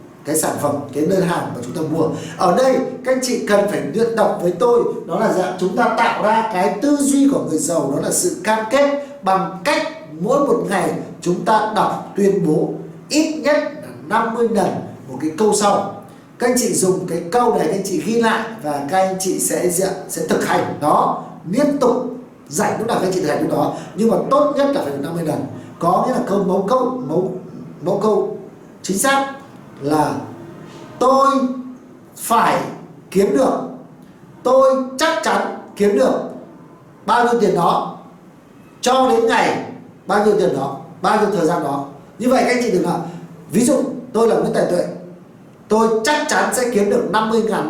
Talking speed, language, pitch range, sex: 200 wpm, Vietnamese, 180-245 Hz, male